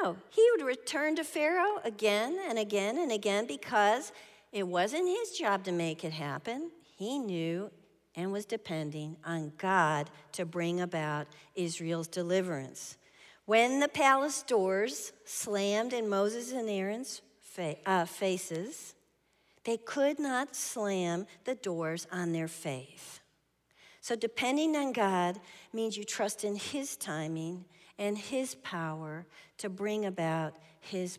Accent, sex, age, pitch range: American, female, 50-69, 170-215 Hz